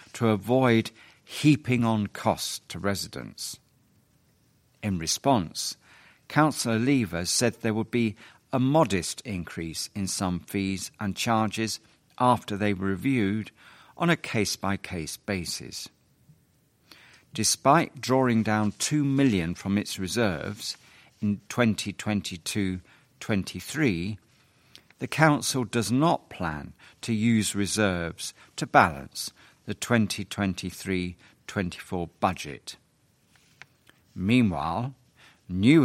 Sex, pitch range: male, 95-120 Hz